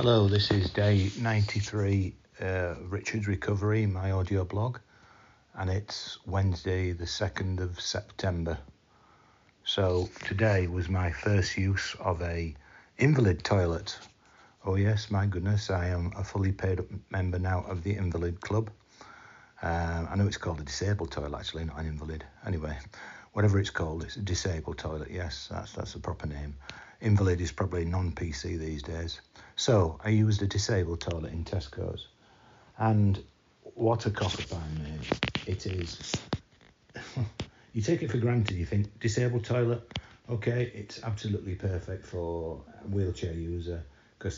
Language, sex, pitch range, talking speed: English, male, 85-105 Hz, 150 wpm